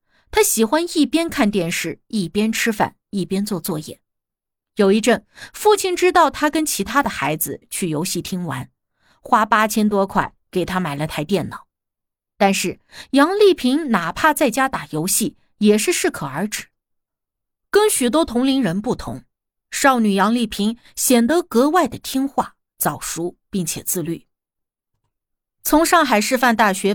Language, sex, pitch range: Chinese, female, 185-280 Hz